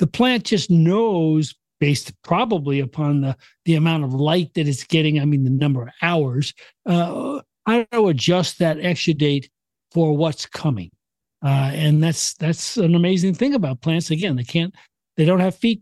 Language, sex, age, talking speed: English, male, 60-79, 175 wpm